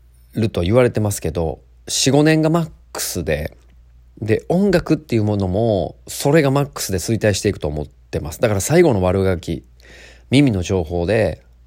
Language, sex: Japanese, male